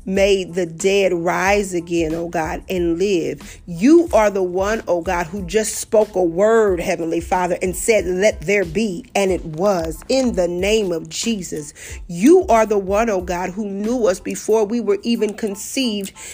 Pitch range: 195-255 Hz